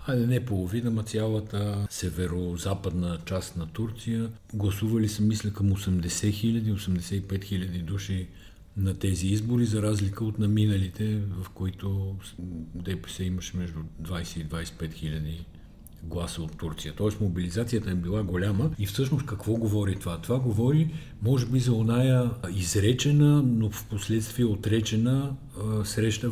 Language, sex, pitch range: Bulgarian, male, 85-115 Hz